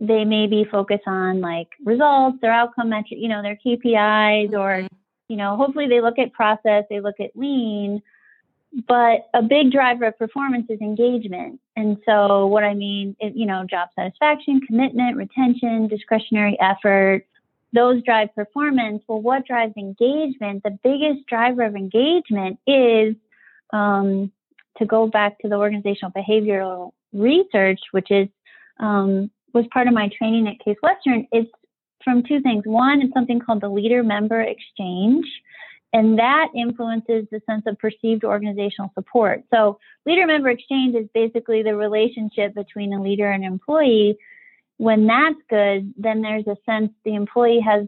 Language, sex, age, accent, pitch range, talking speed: English, female, 30-49, American, 205-245 Hz, 155 wpm